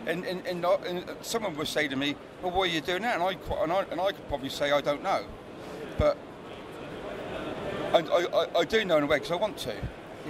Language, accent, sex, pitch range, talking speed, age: English, British, male, 140-175 Hz, 250 wpm, 40-59